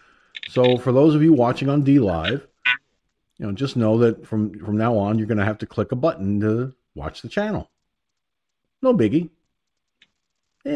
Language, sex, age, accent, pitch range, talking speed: English, male, 50-69, American, 105-155 Hz, 160 wpm